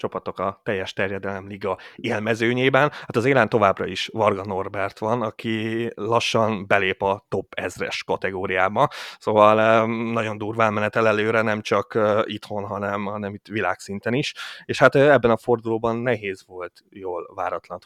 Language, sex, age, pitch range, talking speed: Hungarian, male, 30-49, 100-120 Hz, 150 wpm